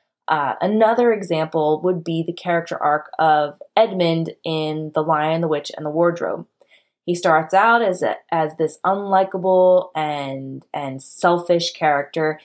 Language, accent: English, American